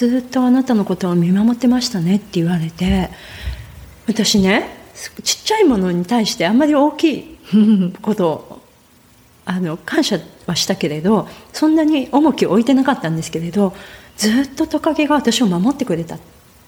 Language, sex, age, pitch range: Japanese, female, 30-49, 180-245 Hz